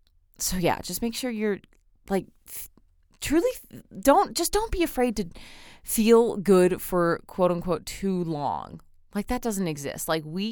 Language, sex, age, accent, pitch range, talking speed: English, female, 20-39, American, 140-190 Hz, 150 wpm